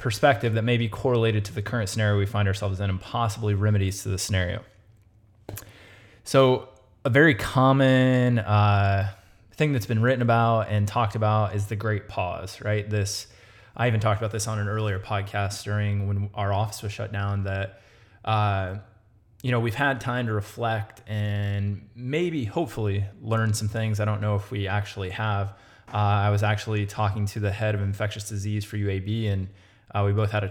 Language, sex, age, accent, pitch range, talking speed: English, male, 20-39, American, 100-115 Hz, 185 wpm